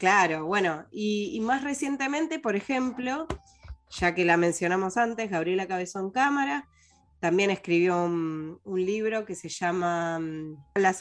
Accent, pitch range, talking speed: Argentinian, 165-215 Hz, 135 wpm